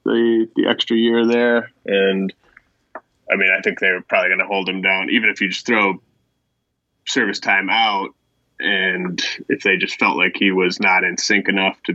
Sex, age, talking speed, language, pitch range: male, 20-39, 195 wpm, English, 95-105 Hz